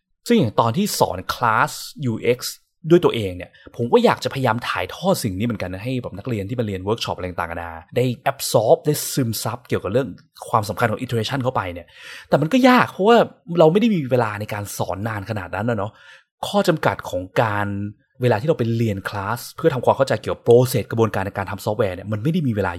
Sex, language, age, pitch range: male, Thai, 20-39, 105-140 Hz